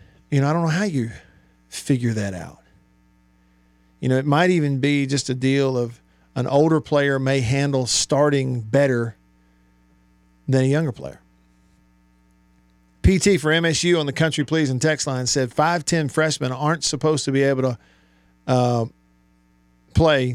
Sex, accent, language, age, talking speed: male, American, English, 50-69, 155 wpm